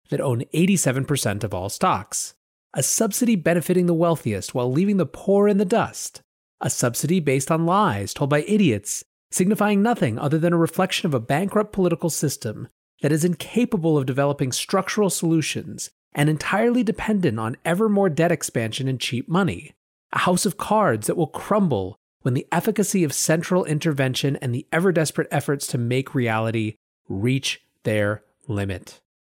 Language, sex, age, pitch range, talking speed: English, male, 30-49, 125-170 Hz, 160 wpm